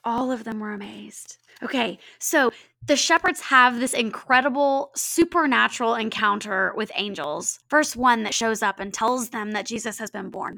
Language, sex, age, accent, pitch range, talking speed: English, female, 20-39, American, 220-265 Hz, 165 wpm